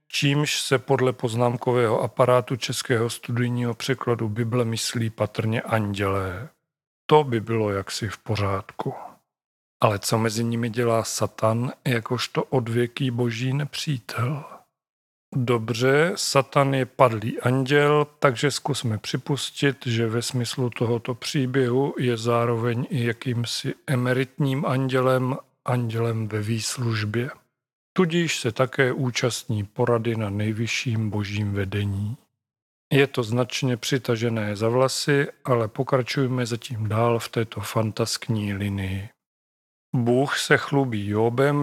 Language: Czech